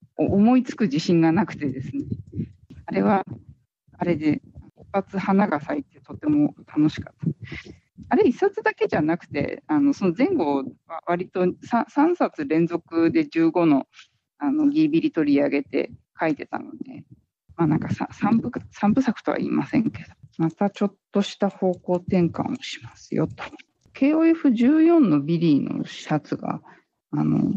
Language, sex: Japanese, female